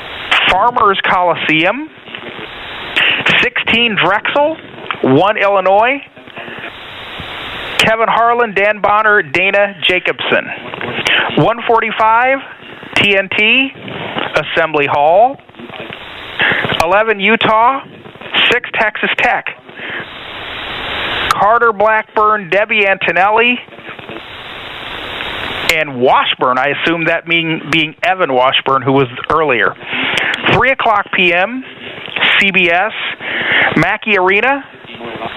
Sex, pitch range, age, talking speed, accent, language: male, 190-230 Hz, 40-59, 75 wpm, American, English